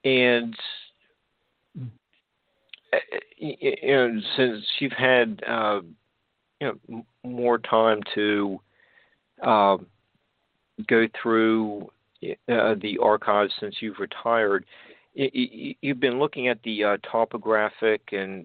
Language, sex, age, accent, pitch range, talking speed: English, male, 50-69, American, 100-120 Hz, 95 wpm